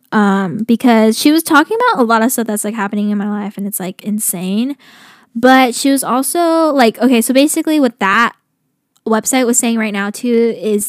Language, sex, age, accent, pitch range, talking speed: English, female, 10-29, American, 215-260 Hz, 205 wpm